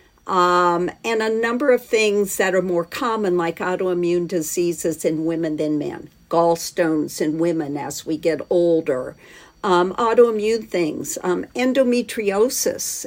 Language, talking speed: English, 135 wpm